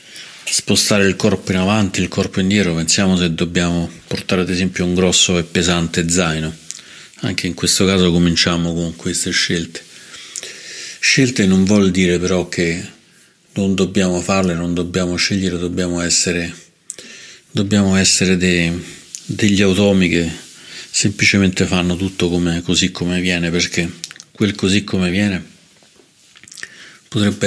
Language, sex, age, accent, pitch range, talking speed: Italian, male, 40-59, native, 85-95 Hz, 130 wpm